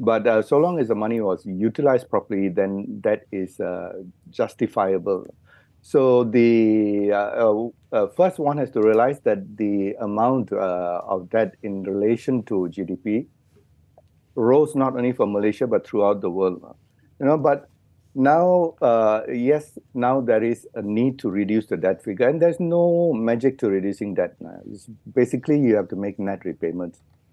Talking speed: 165 wpm